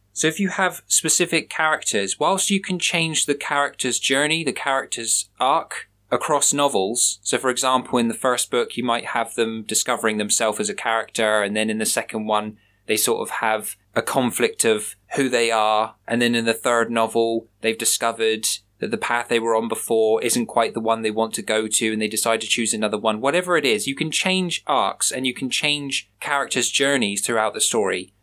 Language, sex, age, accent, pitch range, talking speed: English, male, 20-39, British, 110-140 Hz, 205 wpm